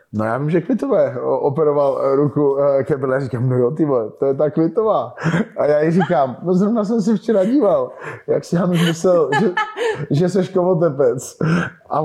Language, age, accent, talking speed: Czech, 20-39, native, 185 wpm